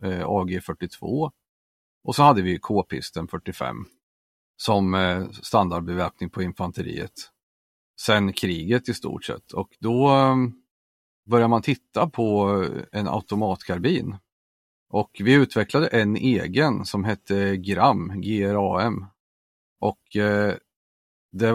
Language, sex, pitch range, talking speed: Swedish, male, 90-120 Hz, 95 wpm